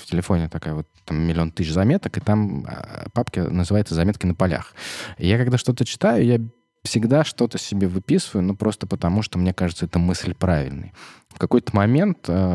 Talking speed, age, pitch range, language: 180 wpm, 20-39, 80-100 Hz, Russian